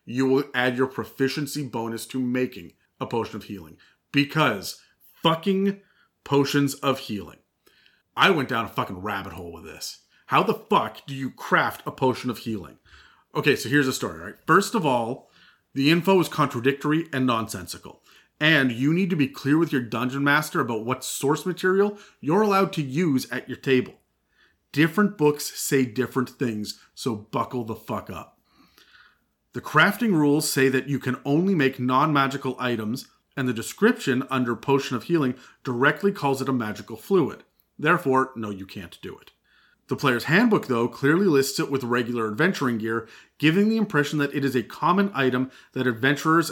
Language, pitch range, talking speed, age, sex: English, 125-155 Hz, 175 wpm, 40-59, male